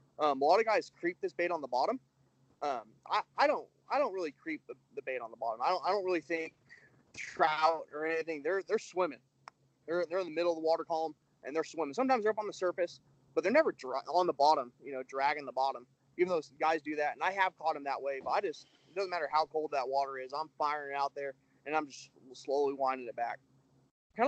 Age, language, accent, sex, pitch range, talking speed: 20-39, English, American, male, 135-170 Hz, 255 wpm